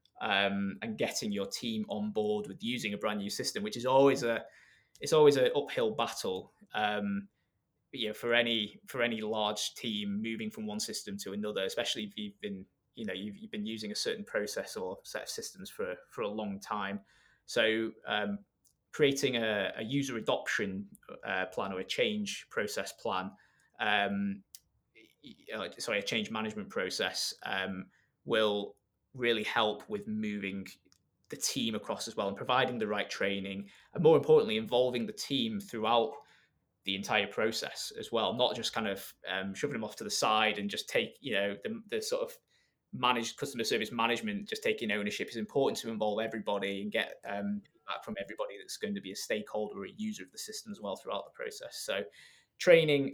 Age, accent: 20-39, British